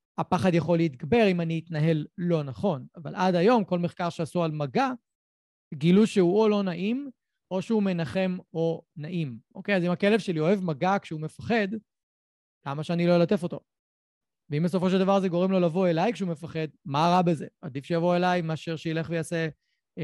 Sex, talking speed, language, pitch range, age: male, 180 wpm, Hebrew, 160-210 Hz, 30-49